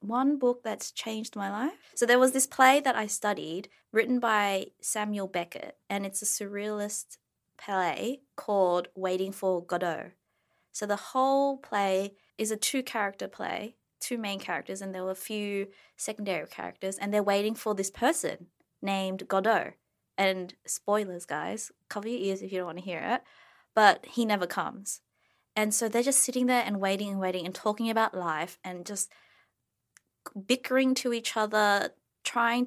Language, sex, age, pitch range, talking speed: English, female, 20-39, 195-235 Hz, 165 wpm